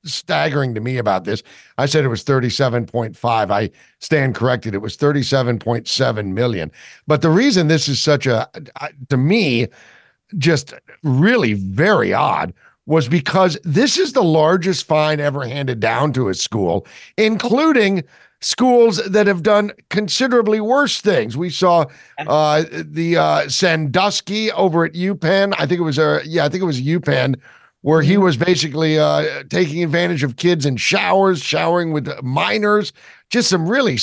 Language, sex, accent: English, male, American